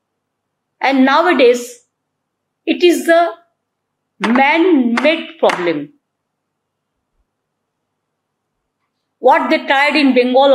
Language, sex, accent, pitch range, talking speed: Hindi, female, native, 285-340 Hz, 75 wpm